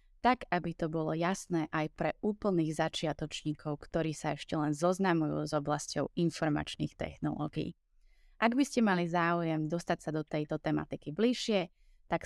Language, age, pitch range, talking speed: English, 20-39, 150-180 Hz, 145 wpm